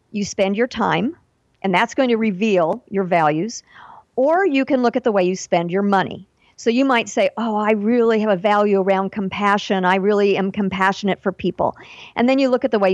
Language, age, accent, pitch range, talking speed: English, 50-69, American, 195-245 Hz, 220 wpm